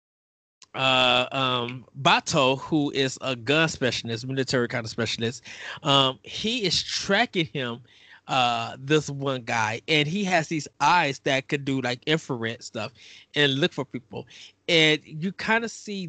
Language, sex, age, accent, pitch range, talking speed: English, male, 20-39, American, 130-165 Hz, 155 wpm